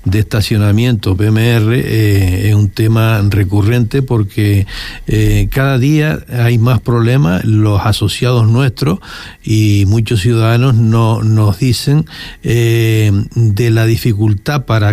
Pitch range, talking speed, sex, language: 110-135 Hz, 115 wpm, male, Spanish